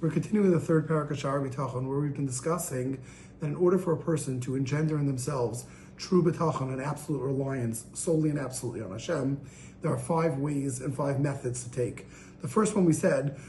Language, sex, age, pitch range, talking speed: English, male, 40-59, 140-185 Hz, 195 wpm